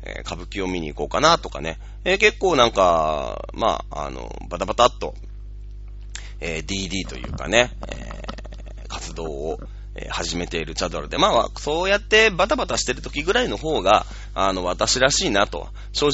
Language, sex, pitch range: Japanese, male, 90-120 Hz